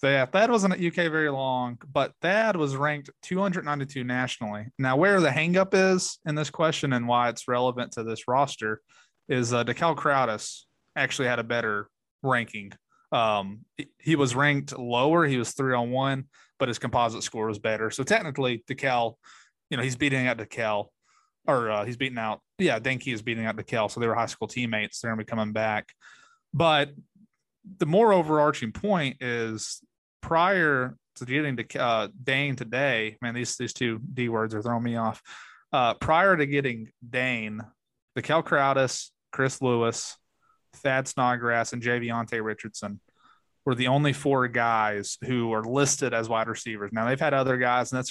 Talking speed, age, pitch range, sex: 175 wpm, 30-49, 115-145 Hz, male